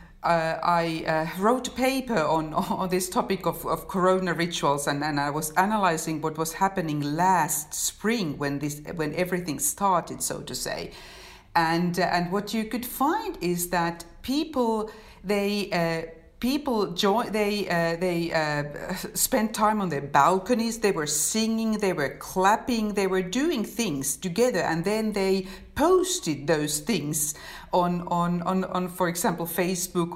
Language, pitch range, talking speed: Swedish, 150-195 Hz, 160 wpm